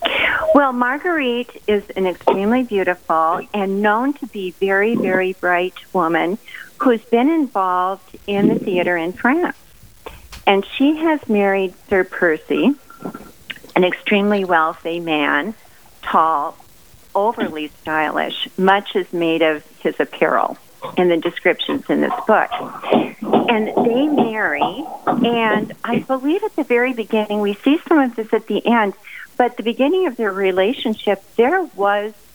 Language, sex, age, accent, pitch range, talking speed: English, female, 50-69, American, 180-235 Hz, 135 wpm